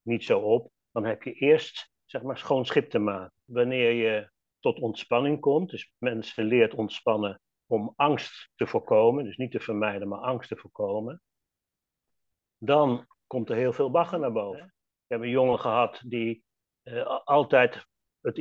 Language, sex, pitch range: Dutch, male, 110-160 Hz